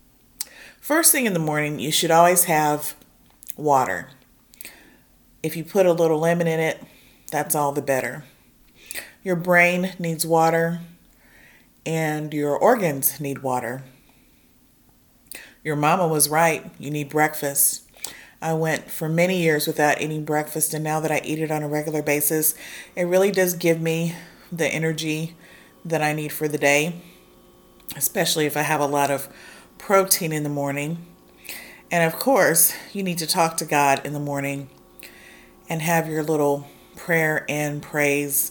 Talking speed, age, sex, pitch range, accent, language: 155 wpm, 40-59, female, 150-170 Hz, American, English